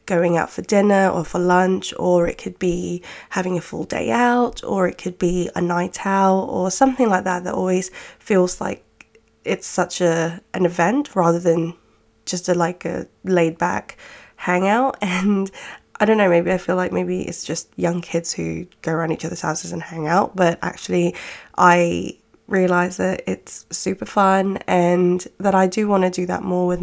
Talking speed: 190 wpm